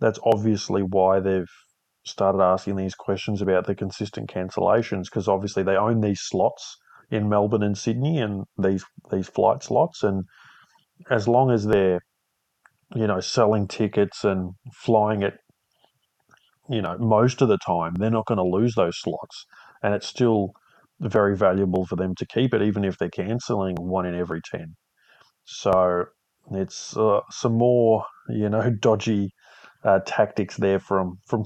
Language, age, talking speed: English, 30-49, 160 wpm